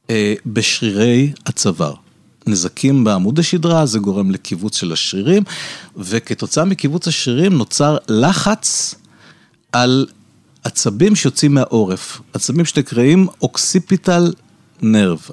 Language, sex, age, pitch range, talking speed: Hebrew, male, 50-69, 110-175 Hz, 90 wpm